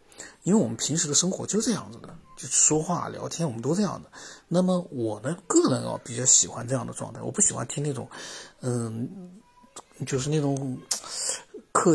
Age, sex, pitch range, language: 50-69, male, 125-165 Hz, Chinese